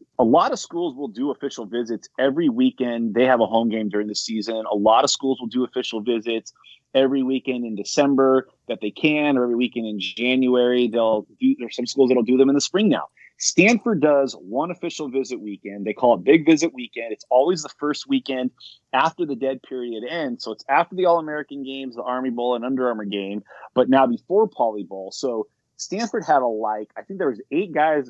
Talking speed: 220 wpm